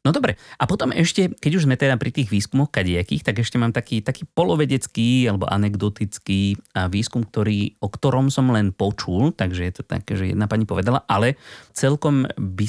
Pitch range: 100-135 Hz